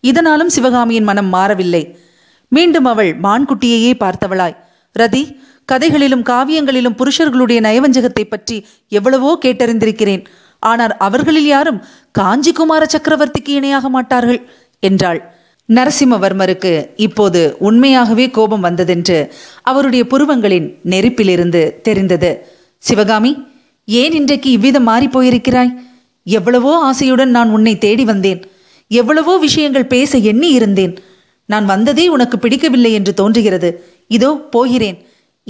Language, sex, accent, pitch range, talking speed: Tamil, female, native, 195-275 Hz, 100 wpm